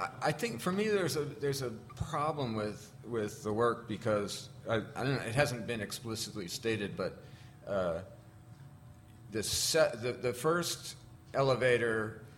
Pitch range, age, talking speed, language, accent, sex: 105-125 Hz, 50-69, 150 wpm, English, American, male